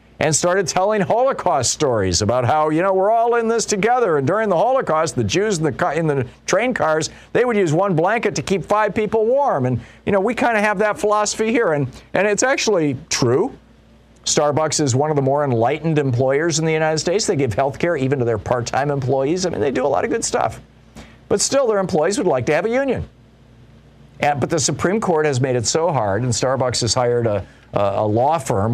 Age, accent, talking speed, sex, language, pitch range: 50-69, American, 230 wpm, male, English, 110-155 Hz